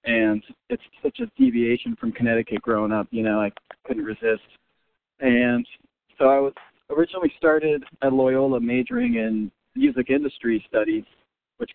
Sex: male